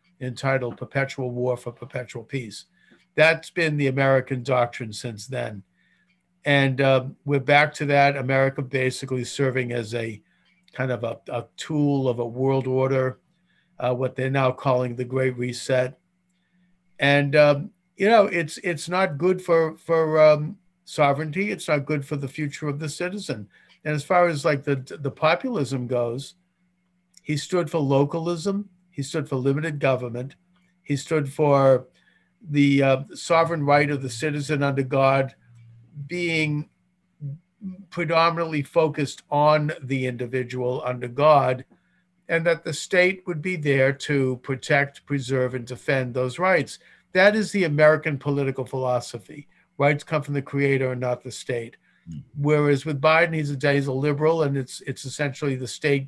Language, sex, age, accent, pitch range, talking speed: English, male, 50-69, American, 130-165 Hz, 150 wpm